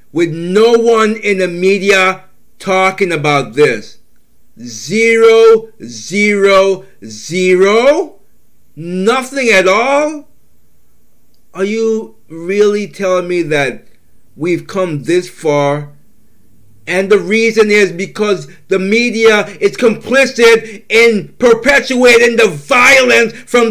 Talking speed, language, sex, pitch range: 100 wpm, English, male, 185-260 Hz